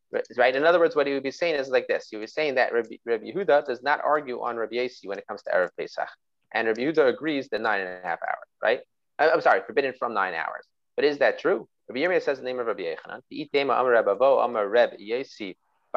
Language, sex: English, male